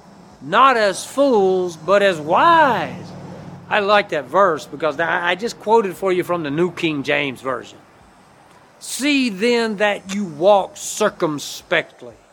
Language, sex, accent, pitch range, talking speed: English, male, American, 145-190 Hz, 135 wpm